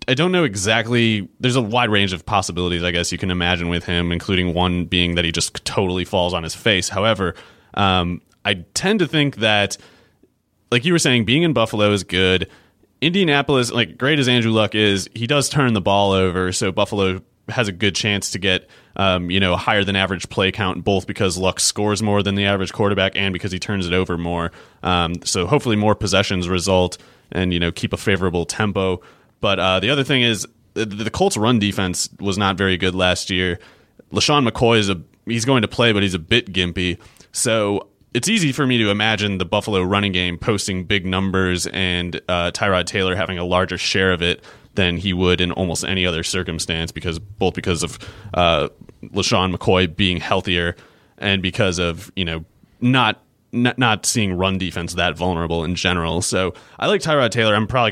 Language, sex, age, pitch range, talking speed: English, male, 30-49, 90-110 Hz, 200 wpm